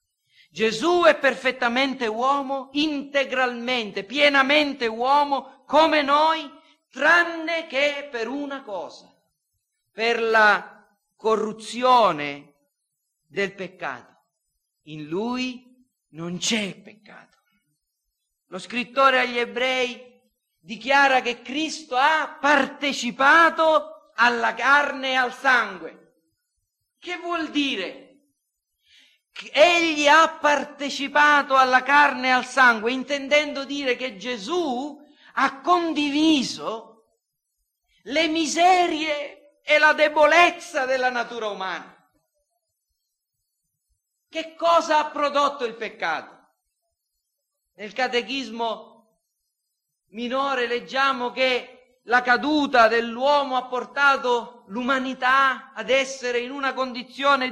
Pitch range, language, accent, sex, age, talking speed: 240-290 Hz, Italian, native, male, 50-69, 90 wpm